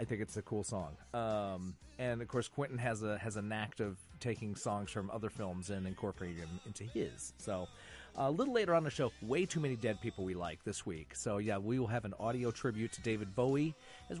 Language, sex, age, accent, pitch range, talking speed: English, male, 30-49, American, 95-120 Hz, 230 wpm